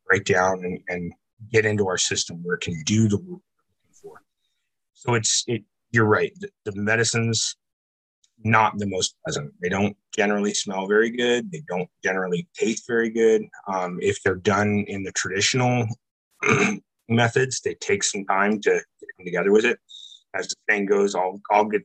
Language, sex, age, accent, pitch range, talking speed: English, male, 30-49, American, 95-145 Hz, 180 wpm